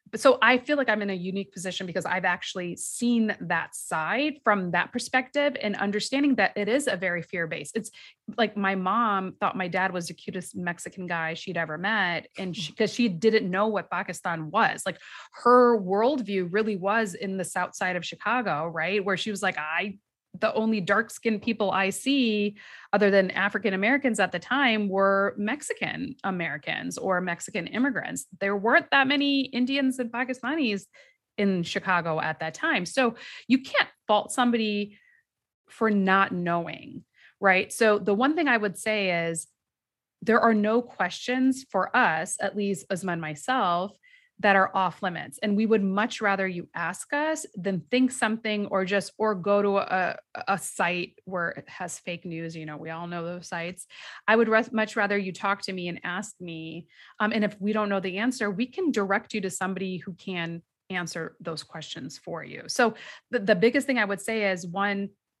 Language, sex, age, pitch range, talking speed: English, female, 30-49, 185-230 Hz, 185 wpm